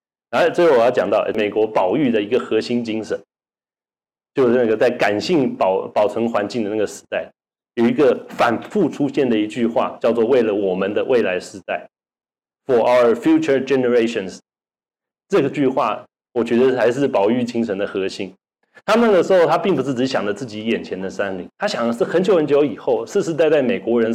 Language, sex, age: Chinese, male, 30-49